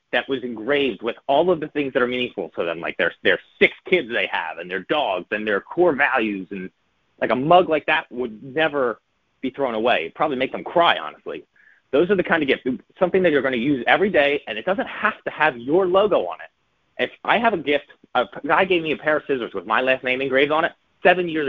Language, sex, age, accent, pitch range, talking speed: English, male, 30-49, American, 115-175 Hz, 250 wpm